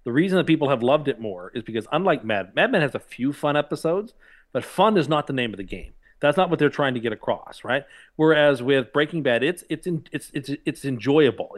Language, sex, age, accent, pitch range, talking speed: English, male, 40-59, American, 110-145 Hz, 250 wpm